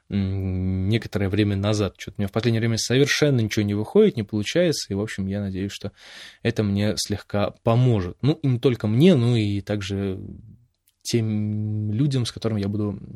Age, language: 20-39, Russian